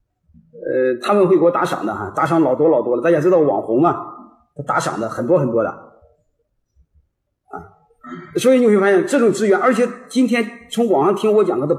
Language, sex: Chinese, male